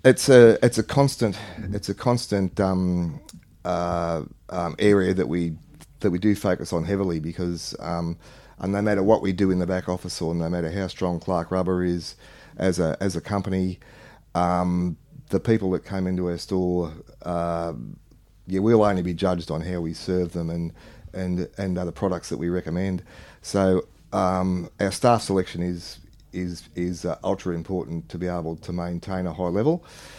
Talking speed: 180 wpm